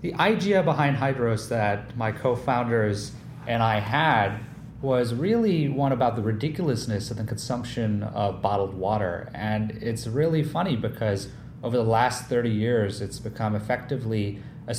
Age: 30-49